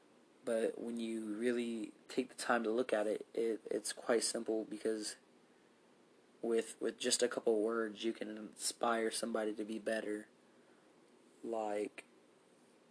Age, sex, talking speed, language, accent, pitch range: 30-49, male, 140 wpm, English, American, 105-115 Hz